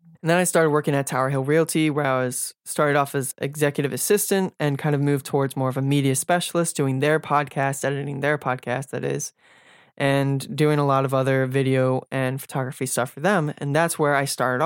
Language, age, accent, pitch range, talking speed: English, 20-39, American, 135-155 Hz, 215 wpm